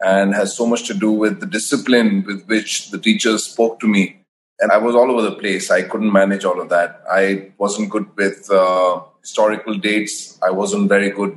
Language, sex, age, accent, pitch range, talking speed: English, male, 30-49, Indian, 100-120 Hz, 210 wpm